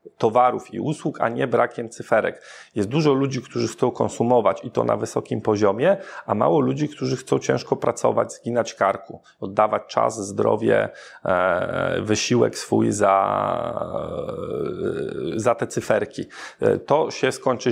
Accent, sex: native, male